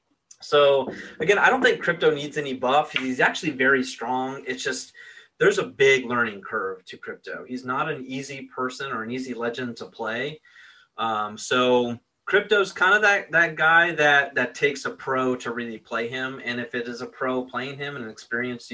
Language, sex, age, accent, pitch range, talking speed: English, male, 30-49, American, 125-175 Hz, 195 wpm